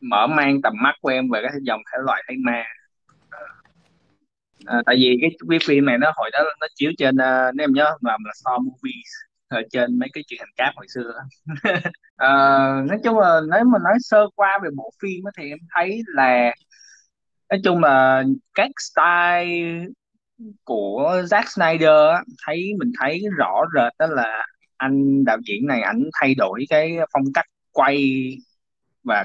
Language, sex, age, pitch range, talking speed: Vietnamese, male, 20-39, 130-215 Hz, 180 wpm